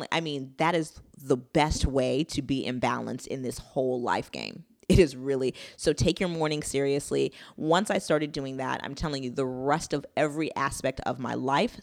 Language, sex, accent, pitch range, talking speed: English, female, American, 145-190 Hz, 205 wpm